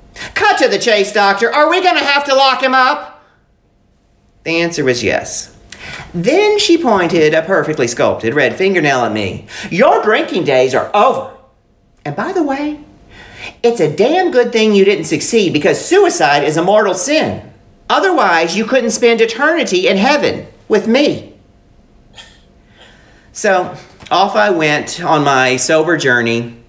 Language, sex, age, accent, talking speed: English, male, 40-59, American, 155 wpm